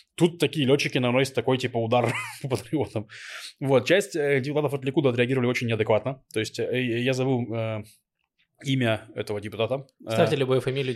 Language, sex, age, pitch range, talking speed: Russian, male, 20-39, 120-150 Hz, 150 wpm